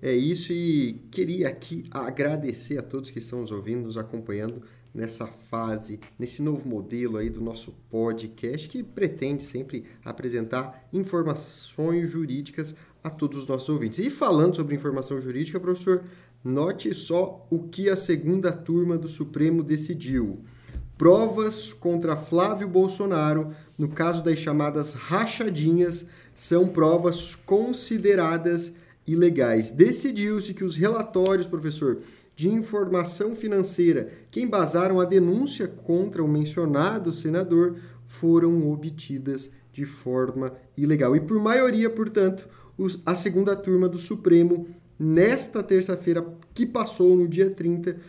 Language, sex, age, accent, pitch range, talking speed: Portuguese, male, 30-49, Brazilian, 145-185 Hz, 125 wpm